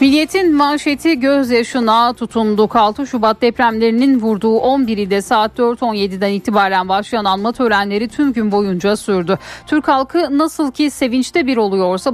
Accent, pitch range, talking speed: native, 215-275 Hz, 135 wpm